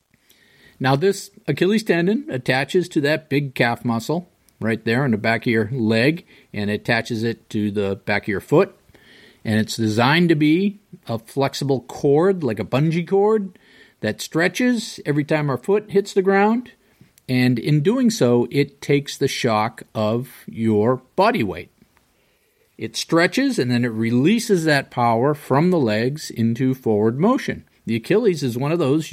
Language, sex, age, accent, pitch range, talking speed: English, male, 50-69, American, 115-185 Hz, 165 wpm